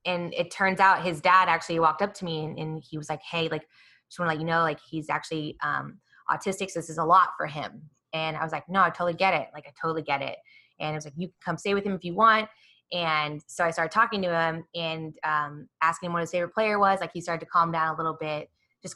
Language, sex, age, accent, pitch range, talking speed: English, female, 20-39, American, 160-195 Hz, 280 wpm